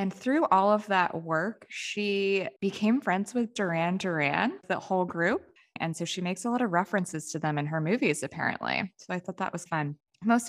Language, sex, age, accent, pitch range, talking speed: English, female, 20-39, American, 170-230 Hz, 205 wpm